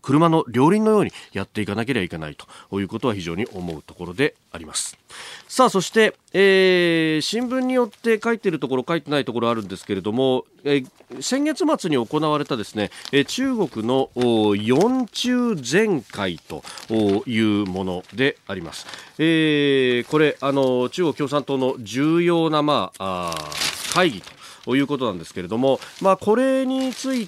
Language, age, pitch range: Japanese, 40-59, 110-170 Hz